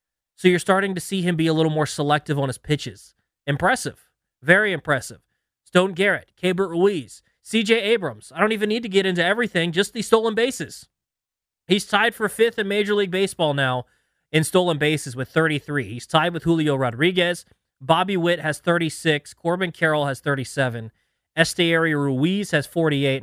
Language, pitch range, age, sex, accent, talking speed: English, 135-185 Hz, 20-39, male, American, 170 wpm